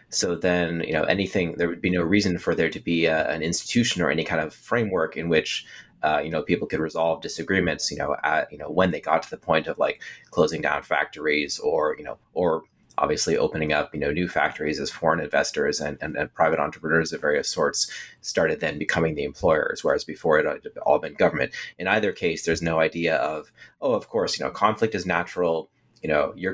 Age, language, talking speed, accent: 30-49, English, 215 wpm, American